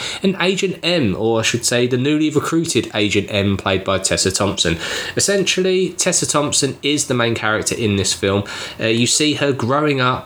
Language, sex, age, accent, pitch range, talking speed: English, male, 20-39, British, 115-165 Hz, 185 wpm